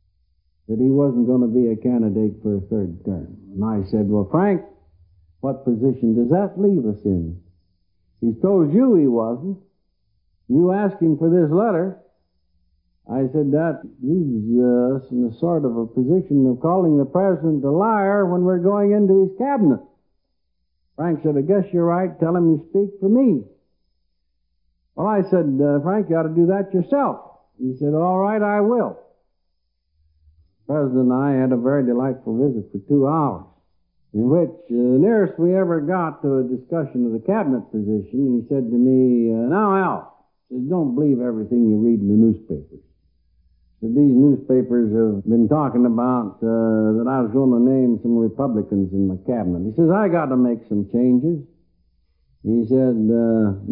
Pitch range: 105-160 Hz